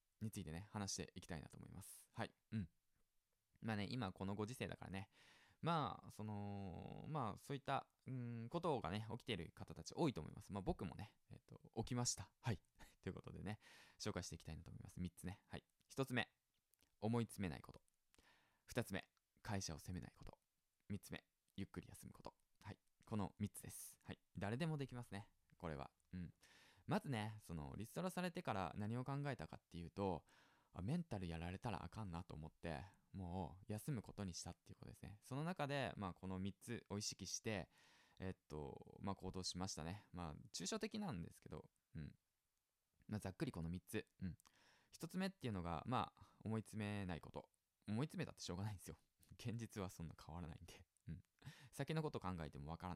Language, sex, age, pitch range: Japanese, male, 20-39, 90-120 Hz